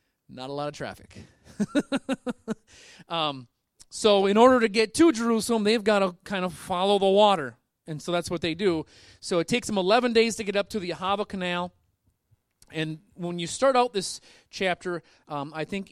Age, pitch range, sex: 30-49, 145-200 Hz, male